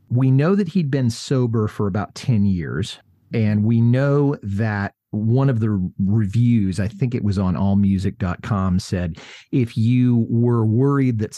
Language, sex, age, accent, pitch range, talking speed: English, male, 40-59, American, 100-130 Hz, 160 wpm